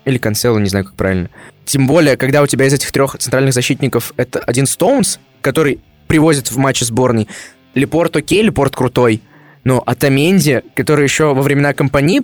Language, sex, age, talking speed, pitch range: Russian, male, 20-39, 170 wpm, 125-160 Hz